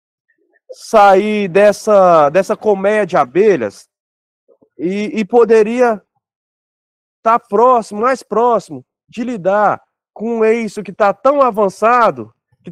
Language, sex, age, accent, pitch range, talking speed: Portuguese, male, 20-39, Brazilian, 180-235 Hz, 110 wpm